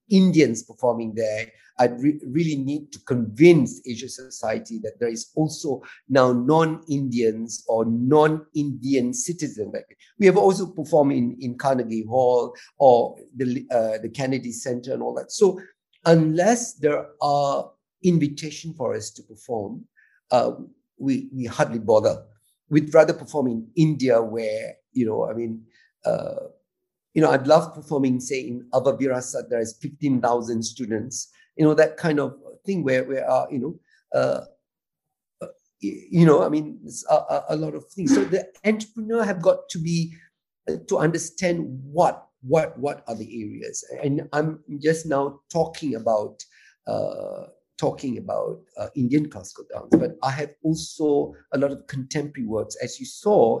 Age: 50-69